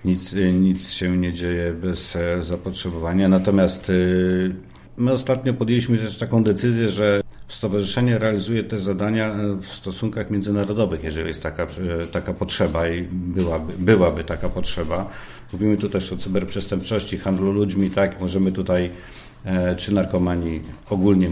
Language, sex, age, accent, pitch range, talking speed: Polish, male, 50-69, native, 90-105 Hz, 125 wpm